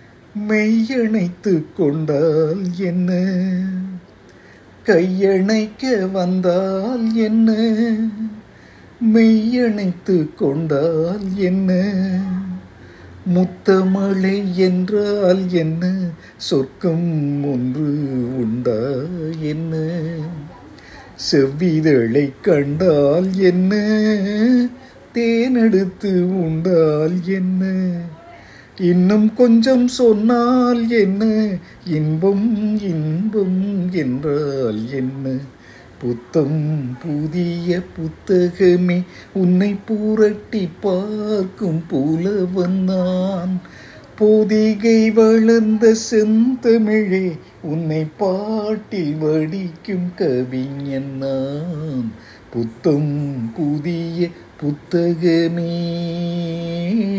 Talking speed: 50 wpm